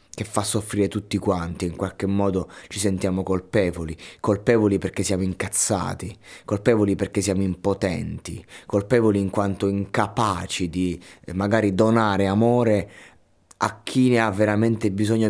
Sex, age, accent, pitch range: male, 20-39, native, 90-105 Hz